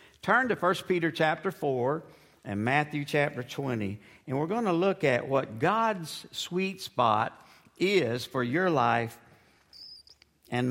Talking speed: 140 wpm